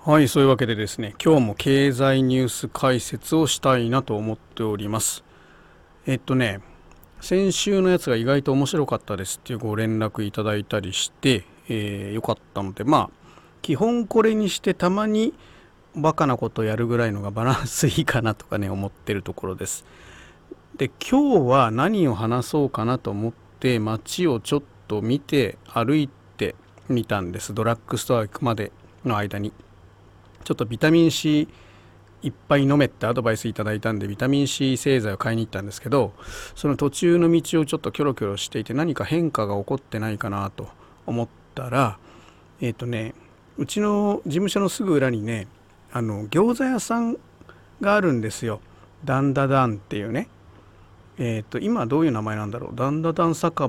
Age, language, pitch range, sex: 40-59, Japanese, 105-145 Hz, male